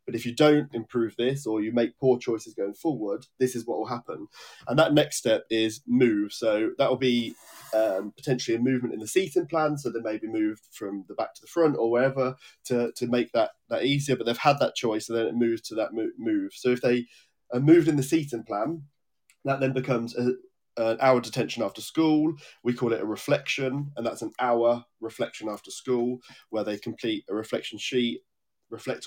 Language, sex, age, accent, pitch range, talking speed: English, male, 10-29, British, 110-135 Hz, 210 wpm